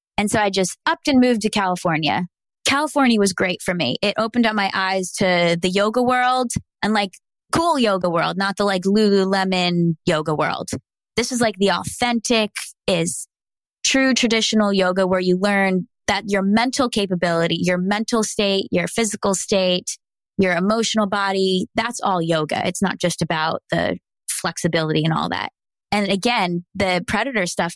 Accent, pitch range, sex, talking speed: American, 180-225 Hz, female, 165 wpm